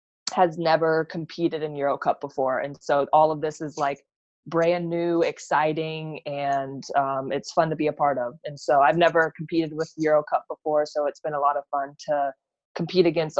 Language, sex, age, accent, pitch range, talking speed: English, female, 20-39, American, 145-170 Hz, 200 wpm